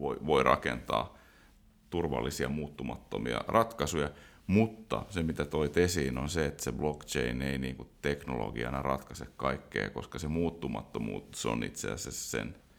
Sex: male